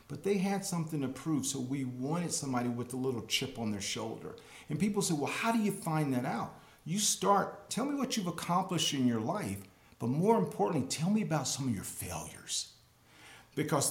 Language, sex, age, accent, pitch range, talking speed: English, male, 50-69, American, 115-165 Hz, 205 wpm